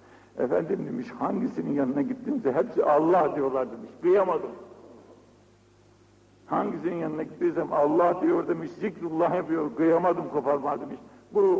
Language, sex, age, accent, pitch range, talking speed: Turkish, male, 60-79, native, 130-190 Hz, 115 wpm